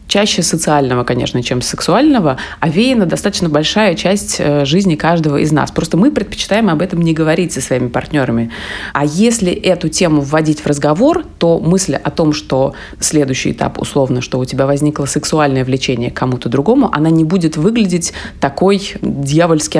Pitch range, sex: 145-180 Hz, female